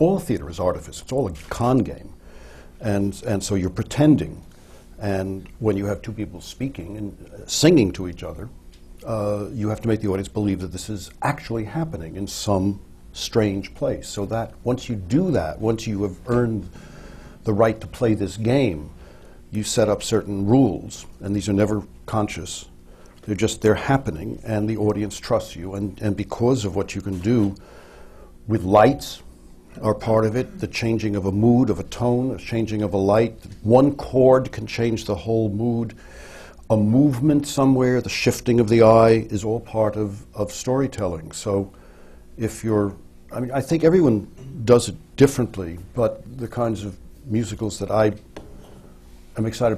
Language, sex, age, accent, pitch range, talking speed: English, male, 60-79, American, 95-115 Hz, 180 wpm